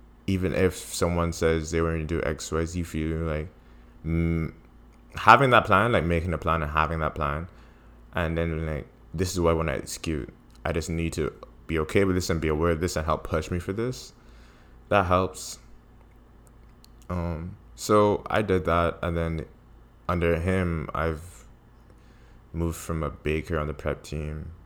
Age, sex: 20-39, male